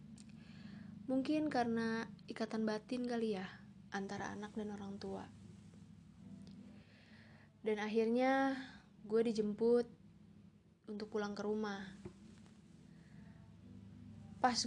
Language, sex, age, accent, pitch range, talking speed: Indonesian, female, 20-39, native, 195-230 Hz, 80 wpm